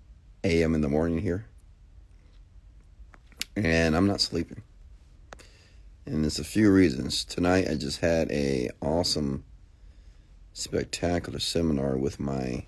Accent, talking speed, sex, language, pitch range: American, 115 wpm, male, English, 75-90 Hz